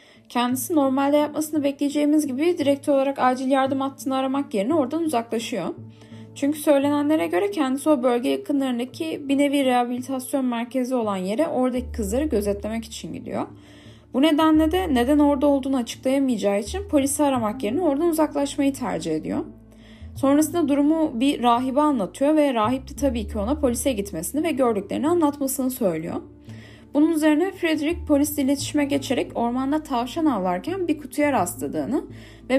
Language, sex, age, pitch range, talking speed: Turkish, female, 10-29, 230-300 Hz, 140 wpm